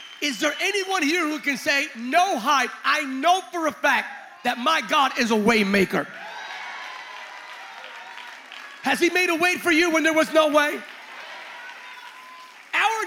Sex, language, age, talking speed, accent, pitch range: male, English, 40-59, 155 wpm, American, 210-305 Hz